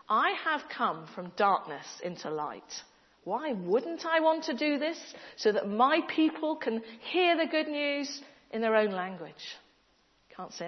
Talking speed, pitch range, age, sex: 165 wpm, 210-310 Hz, 40-59, female